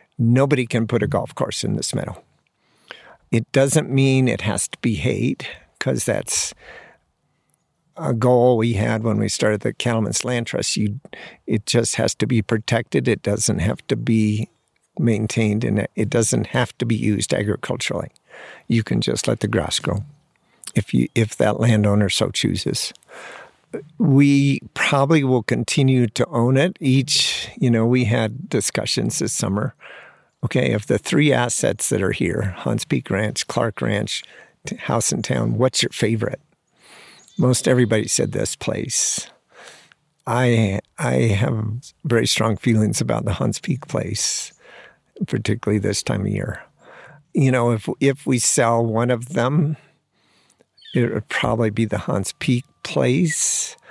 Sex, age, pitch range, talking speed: male, 50-69, 110-135 Hz, 150 wpm